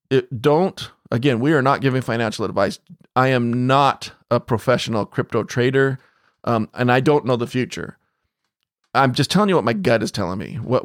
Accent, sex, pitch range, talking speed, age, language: American, male, 115-135 Hz, 190 wpm, 40-59, English